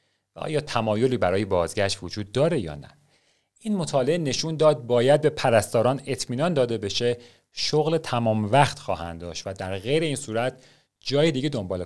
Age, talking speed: 40-59, 155 wpm